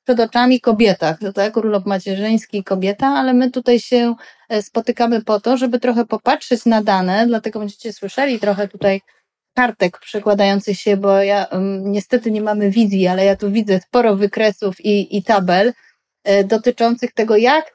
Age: 30-49